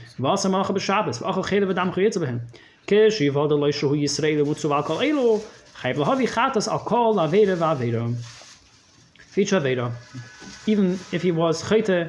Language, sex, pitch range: English, male, 140-175 Hz